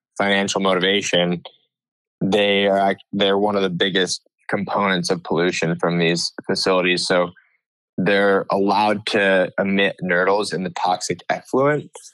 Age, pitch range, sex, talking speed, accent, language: 20-39, 90-100 Hz, male, 125 wpm, American, English